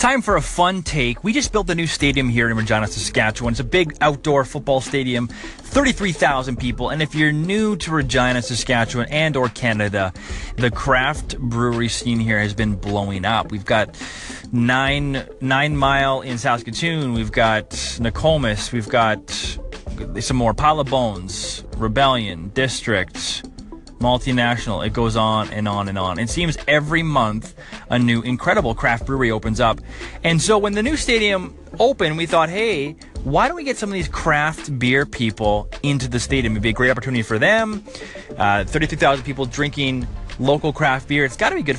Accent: American